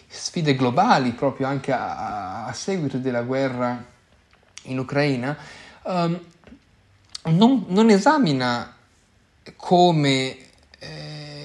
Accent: native